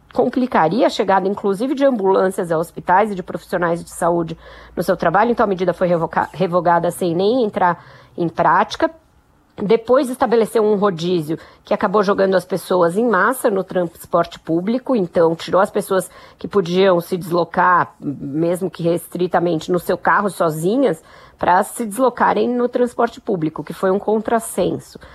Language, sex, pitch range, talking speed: Portuguese, female, 180-235 Hz, 155 wpm